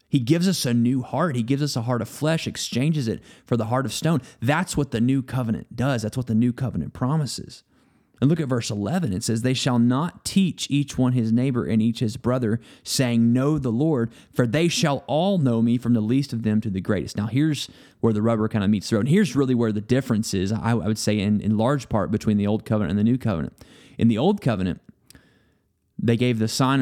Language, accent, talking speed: English, American, 245 wpm